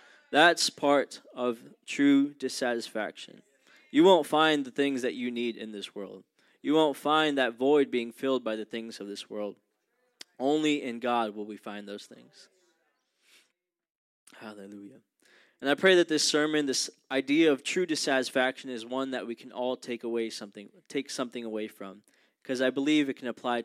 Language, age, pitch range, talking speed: English, 20-39, 115-140 Hz, 175 wpm